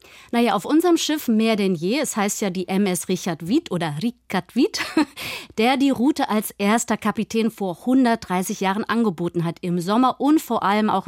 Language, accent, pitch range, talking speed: German, German, 185-245 Hz, 185 wpm